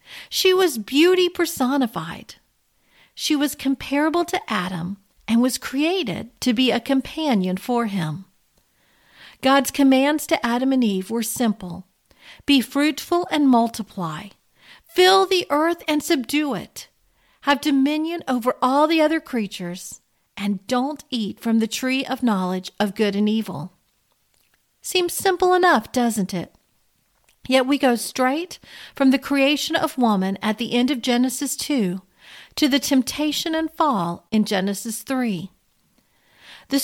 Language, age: English, 40-59